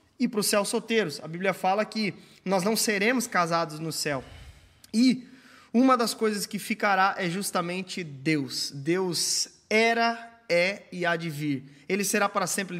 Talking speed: 165 wpm